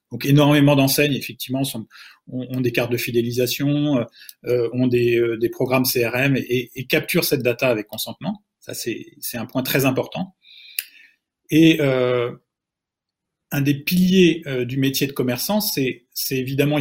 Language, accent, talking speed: French, French, 150 wpm